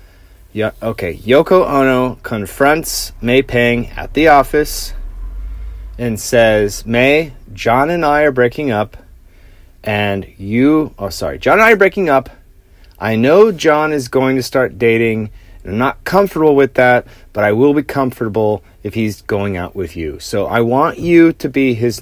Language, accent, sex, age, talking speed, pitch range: English, American, male, 30-49, 165 wpm, 95-135 Hz